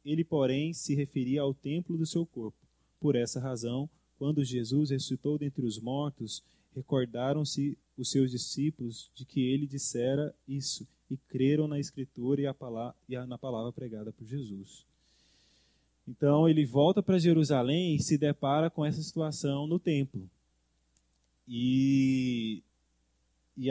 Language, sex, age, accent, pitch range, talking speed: Portuguese, male, 20-39, Brazilian, 120-150 Hz, 140 wpm